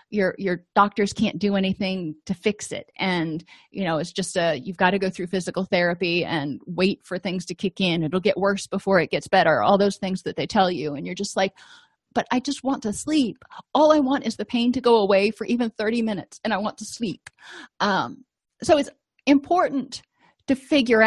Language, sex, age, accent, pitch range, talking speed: English, female, 30-49, American, 190-240 Hz, 220 wpm